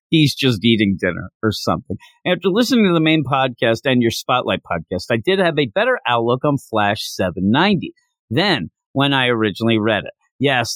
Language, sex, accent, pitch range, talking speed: English, male, American, 115-160 Hz, 180 wpm